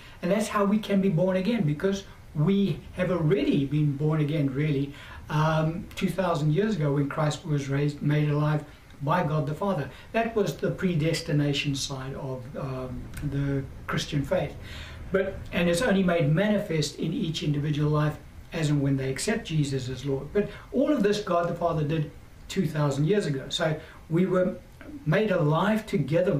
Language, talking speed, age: English, 170 wpm, 60-79